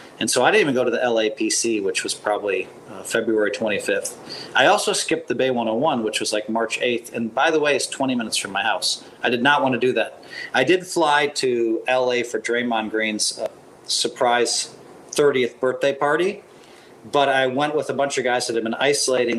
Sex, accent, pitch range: male, American, 115-145 Hz